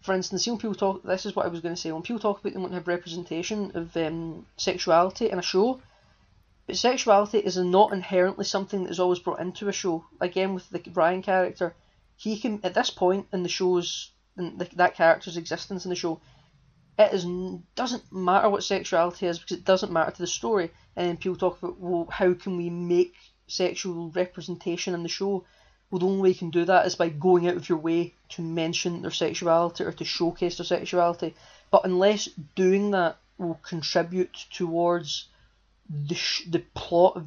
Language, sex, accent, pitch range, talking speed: English, female, British, 170-190 Hz, 205 wpm